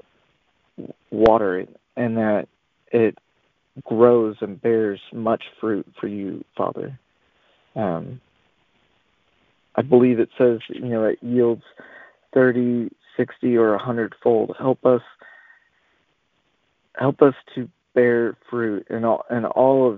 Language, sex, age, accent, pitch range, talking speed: English, male, 40-59, American, 110-125 Hz, 115 wpm